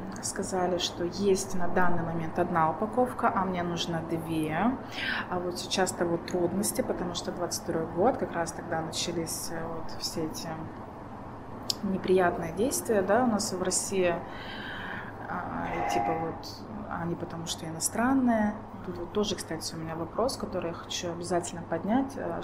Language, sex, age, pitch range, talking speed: Russian, female, 20-39, 165-205 Hz, 150 wpm